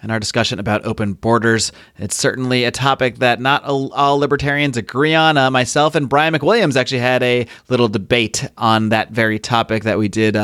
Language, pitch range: English, 115-140 Hz